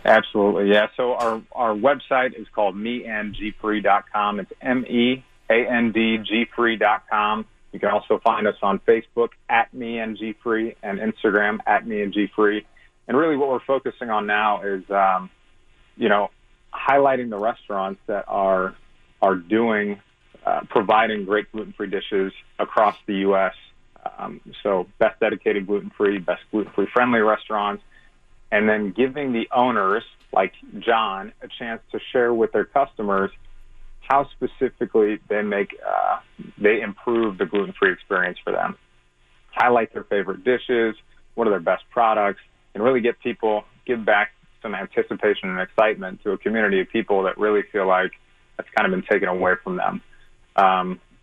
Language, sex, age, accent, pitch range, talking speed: English, male, 30-49, American, 100-120 Hz, 145 wpm